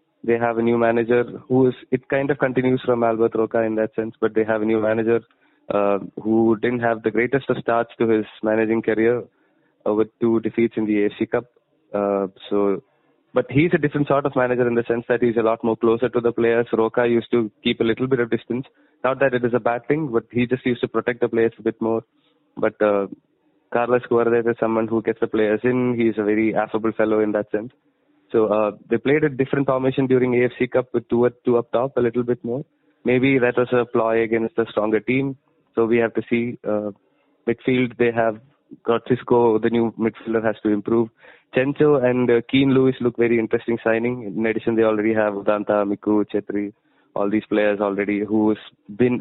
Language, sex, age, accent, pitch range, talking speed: English, male, 20-39, Indian, 110-125 Hz, 220 wpm